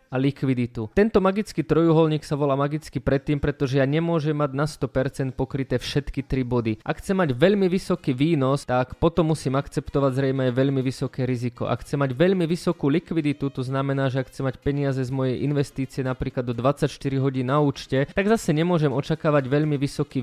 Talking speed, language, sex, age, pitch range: 185 wpm, Slovak, male, 20-39, 130-150 Hz